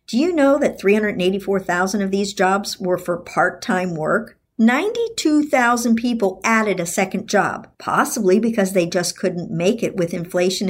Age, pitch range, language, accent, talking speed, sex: 50-69, 185-240 Hz, English, American, 150 wpm, male